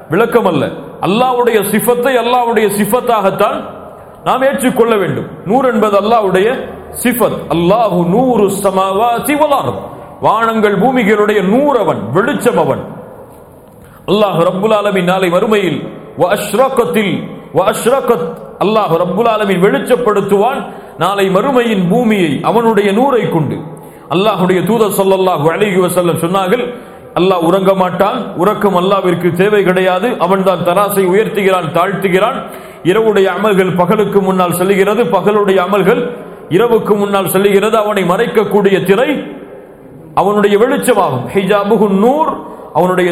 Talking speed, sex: 100 wpm, male